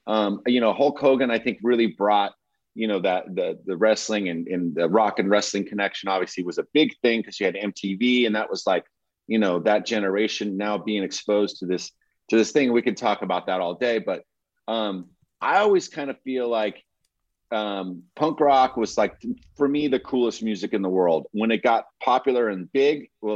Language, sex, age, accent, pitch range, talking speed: English, male, 30-49, American, 105-125 Hz, 210 wpm